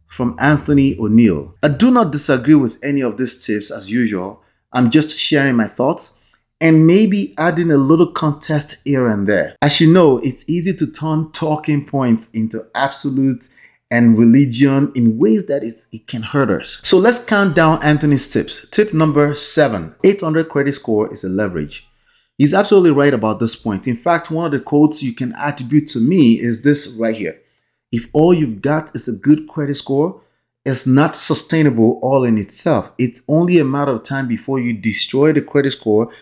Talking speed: 185 wpm